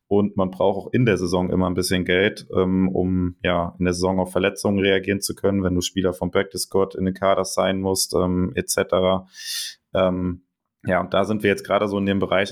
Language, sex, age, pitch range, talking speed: German, male, 20-39, 90-100 Hz, 220 wpm